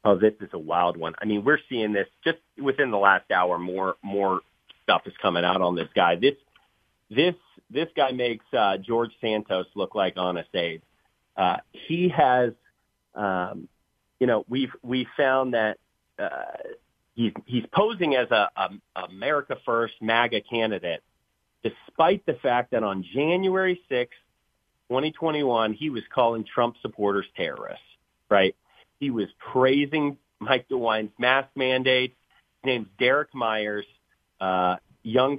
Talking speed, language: 150 wpm, English